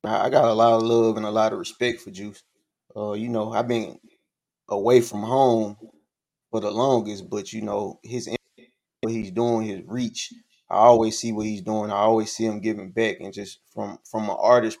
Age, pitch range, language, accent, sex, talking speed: 20-39, 105-120 Hz, English, American, male, 205 wpm